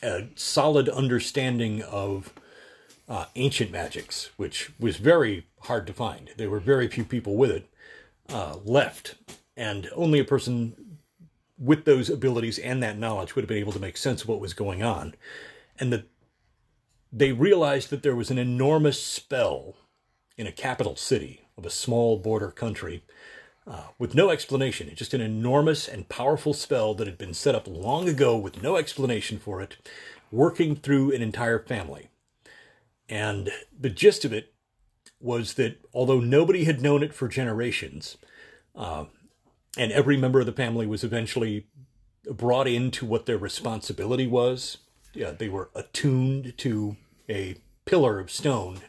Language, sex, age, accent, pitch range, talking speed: English, male, 40-59, American, 110-135 Hz, 160 wpm